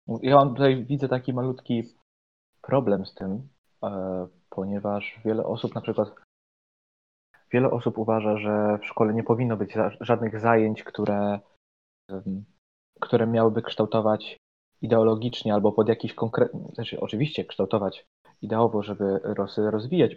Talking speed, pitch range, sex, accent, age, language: 115 wpm, 105-125 Hz, male, native, 20-39, Polish